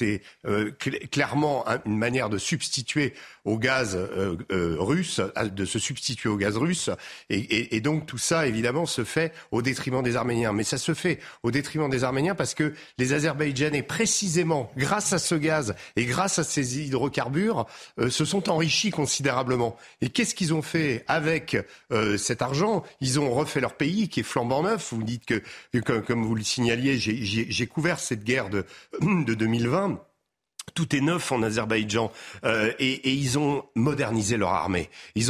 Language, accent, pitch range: French, French, 110-145 Hz